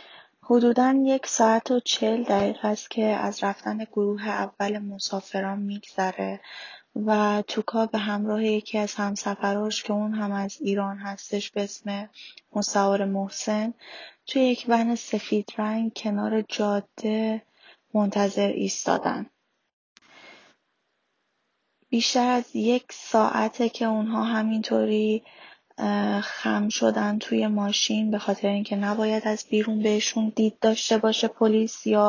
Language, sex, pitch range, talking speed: Persian, female, 200-220 Hz, 120 wpm